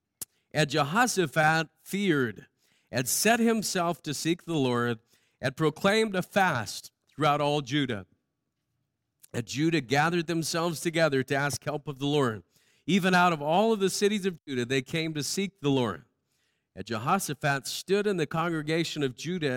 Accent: American